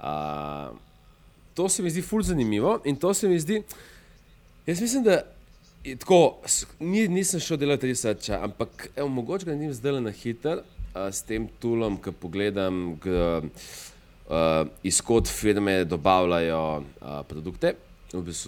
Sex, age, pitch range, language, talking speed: male, 30-49, 85-110 Hz, English, 145 wpm